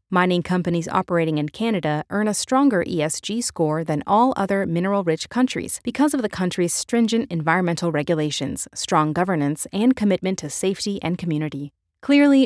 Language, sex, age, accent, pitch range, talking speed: English, female, 30-49, American, 160-210 Hz, 150 wpm